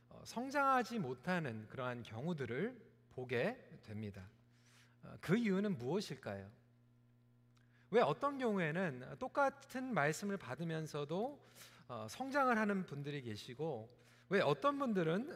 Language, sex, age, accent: Korean, male, 40-59, native